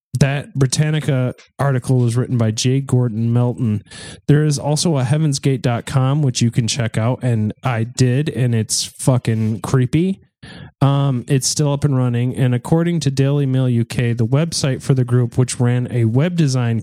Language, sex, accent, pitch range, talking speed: English, male, American, 115-140 Hz, 170 wpm